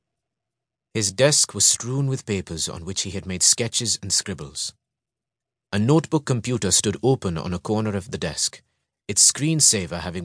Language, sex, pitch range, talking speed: English, male, 95-130 Hz, 165 wpm